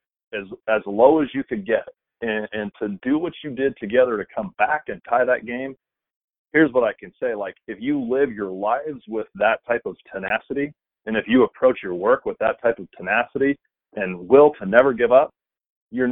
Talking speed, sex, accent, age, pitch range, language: 210 wpm, male, American, 40-59, 110-145 Hz, English